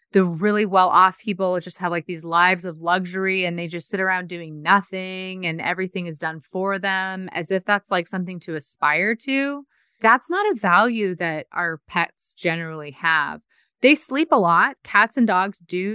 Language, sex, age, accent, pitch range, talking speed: English, female, 30-49, American, 175-230 Hz, 185 wpm